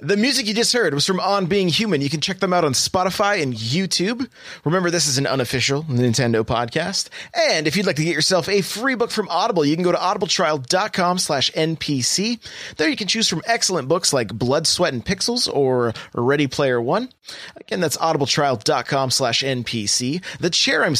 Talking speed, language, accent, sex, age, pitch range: 190 wpm, English, American, male, 30-49, 135-195 Hz